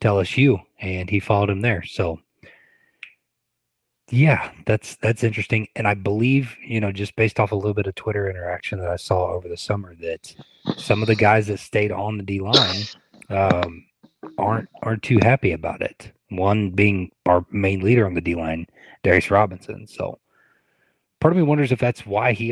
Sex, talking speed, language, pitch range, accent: male, 190 wpm, English, 90-110 Hz, American